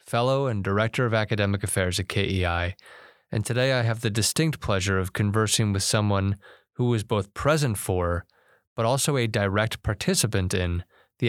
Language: English